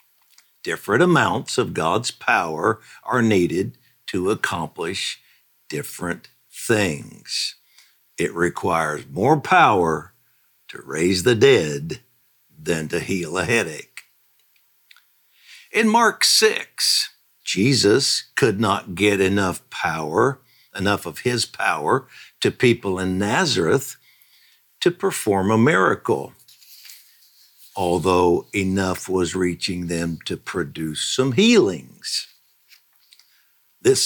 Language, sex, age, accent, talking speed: English, male, 60-79, American, 95 wpm